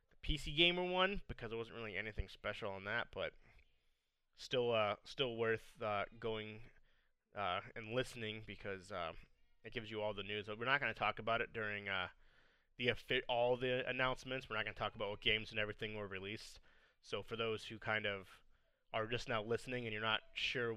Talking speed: 200 wpm